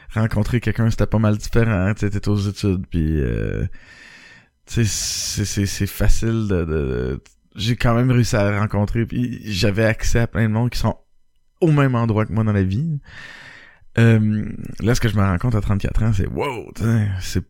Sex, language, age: male, French, 20-39